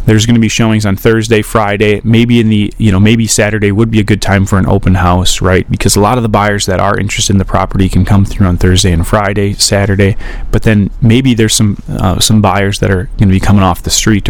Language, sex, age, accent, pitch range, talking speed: English, male, 30-49, American, 100-115 Hz, 250 wpm